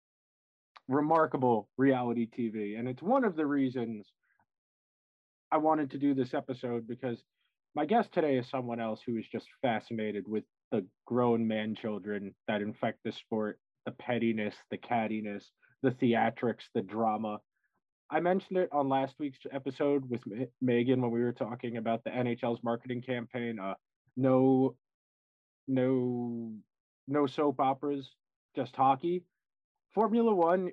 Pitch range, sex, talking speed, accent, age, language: 115-135 Hz, male, 140 wpm, American, 20-39, English